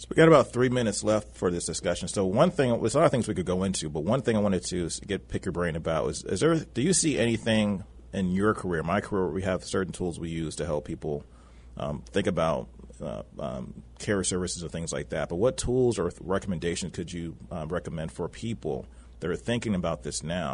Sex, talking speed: male, 240 wpm